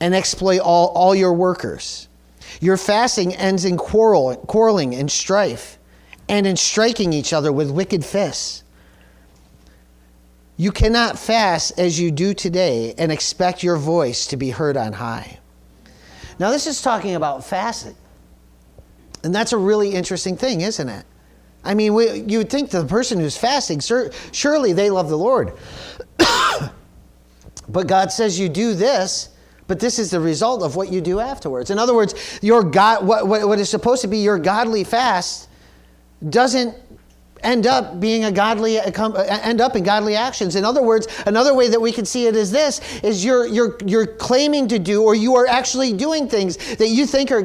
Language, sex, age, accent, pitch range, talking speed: English, male, 40-59, American, 155-230 Hz, 175 wpm